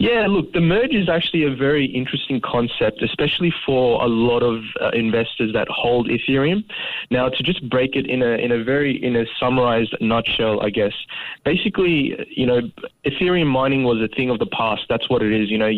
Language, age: English, 20-39